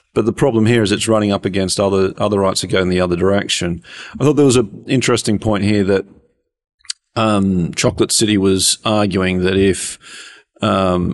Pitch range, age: 95-110 Hz, 40-59